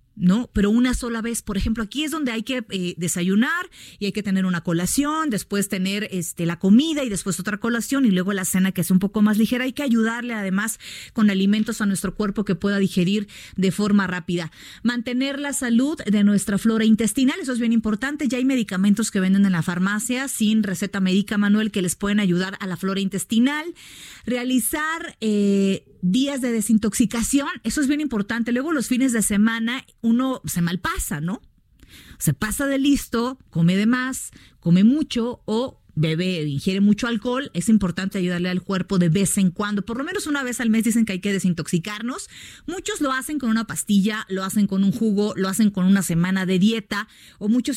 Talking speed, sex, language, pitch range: 200 wpm, female, Spanish, 190-240 Hz